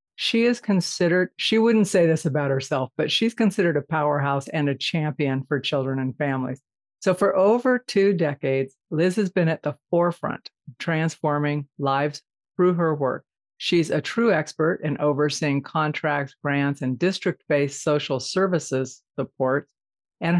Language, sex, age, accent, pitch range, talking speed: English, female, 50-69, American, 145-175 Hz, 155 wpm